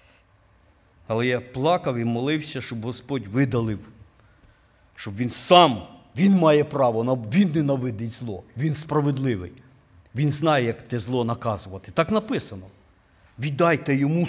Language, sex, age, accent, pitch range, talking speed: Ukrainian, male, 50-69, native, 100-150 Hz, 120 wpm